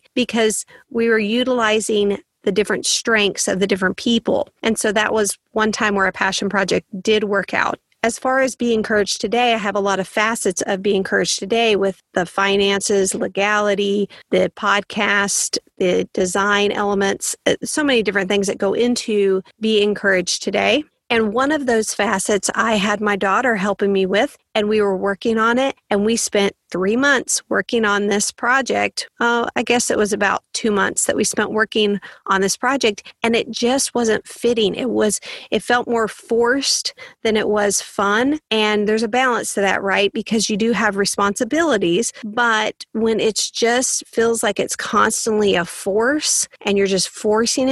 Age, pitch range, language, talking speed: 40-59, 200-235 Hz, English, 180 wpm